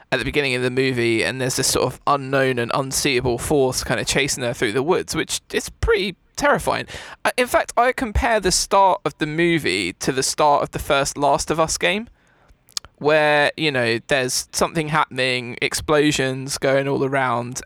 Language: English